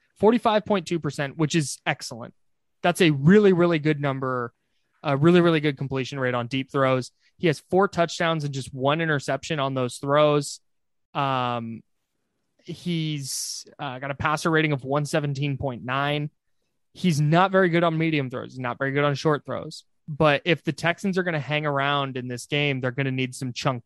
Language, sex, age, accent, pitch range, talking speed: English, male, 20-39, American, 130-155 Hz, 175 wpm